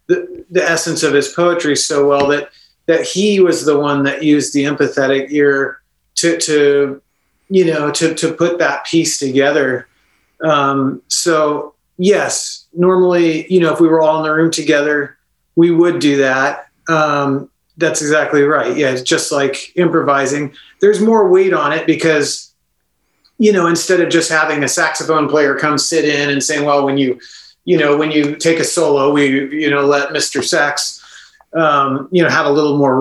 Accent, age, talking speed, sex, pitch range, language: American, 40-59, 180 wpm, male, 140-165 Hz, English